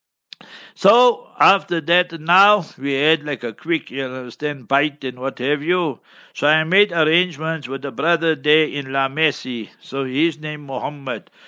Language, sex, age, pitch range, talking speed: English, male, 60-79, 135-160 Hz, 175 wpm